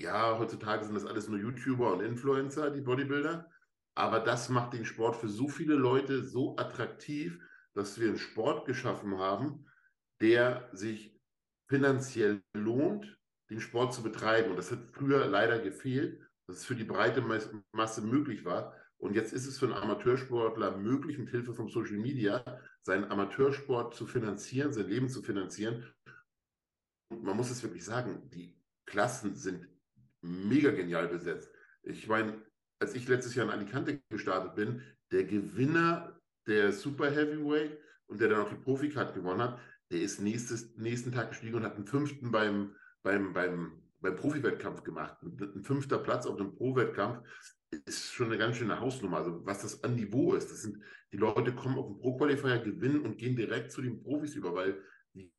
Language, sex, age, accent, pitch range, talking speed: English, male, 50-69, German, 105-135 Hz, 170 wpm